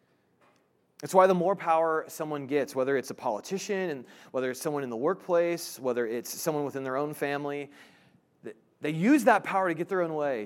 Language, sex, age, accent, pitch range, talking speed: English, male, 30-49, American, 125-170 Hz, 195 wpm